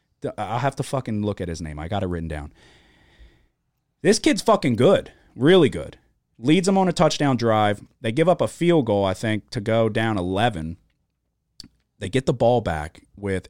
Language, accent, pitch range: English, American, 90-110 Hz